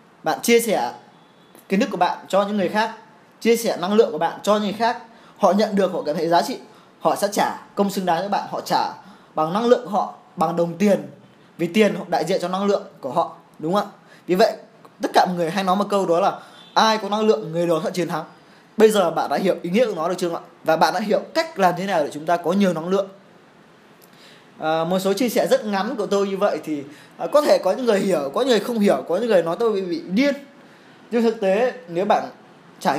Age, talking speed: 20-39, 265 wpm